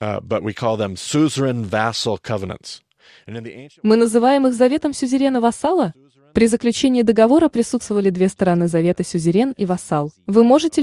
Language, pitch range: Russian, 170-265 Hz